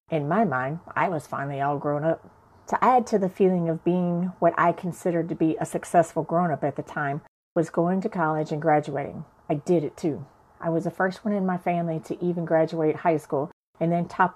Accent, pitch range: American, 155-180 Hz